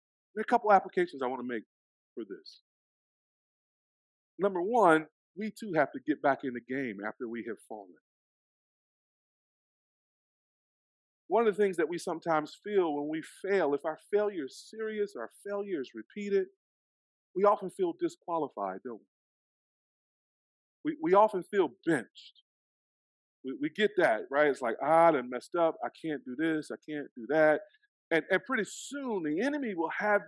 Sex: male